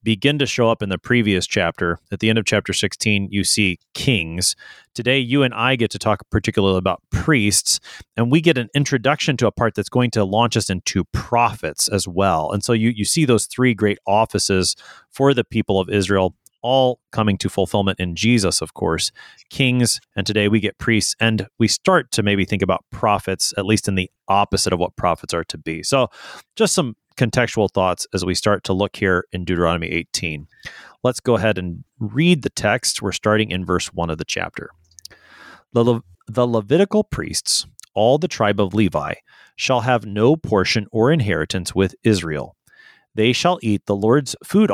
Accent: American